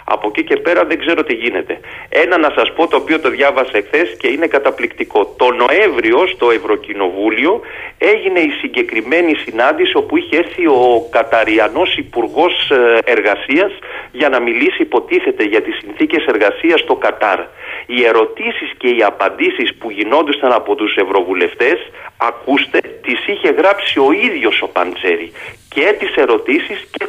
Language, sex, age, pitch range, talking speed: Greek, male, 40-59, 345-440 Hz, 150 wpm